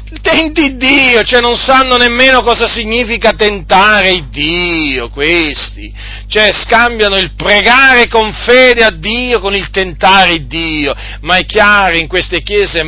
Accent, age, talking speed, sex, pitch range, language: native, 40-59, 135 wpm, male, 130-180 Hz, Italian